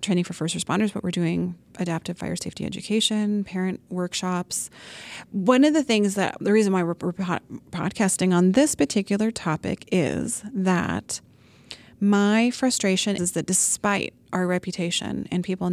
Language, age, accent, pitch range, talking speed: English, 30-49, American, 175-200 Hz, 145 wpm